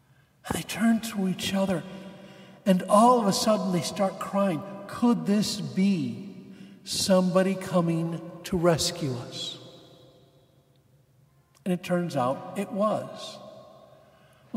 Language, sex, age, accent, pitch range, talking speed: English, male, 60-79, American, 165-225 Hz, 105 wpm